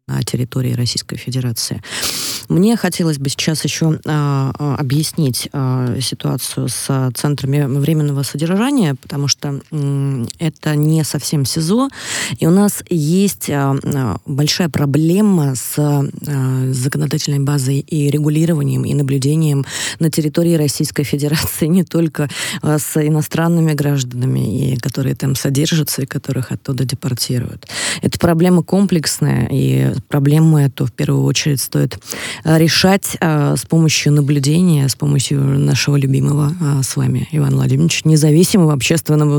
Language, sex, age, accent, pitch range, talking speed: Russian, female, 20-39, native, 135-155 Hz, 115 wpm